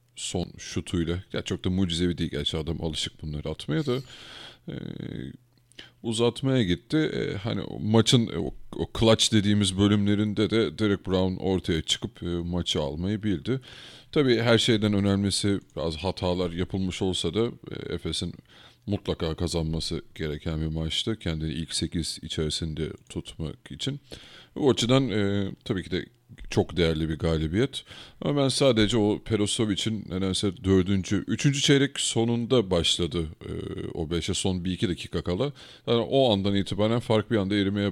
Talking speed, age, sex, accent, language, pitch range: 140 wpm, 40-59, male, native, Turkish, 85-115 Hz